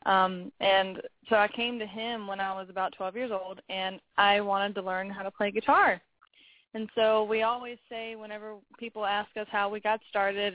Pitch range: 190-215 Hz